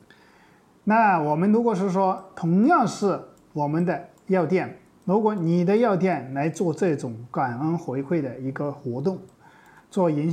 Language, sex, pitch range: Chinese, male, 140-185 Hz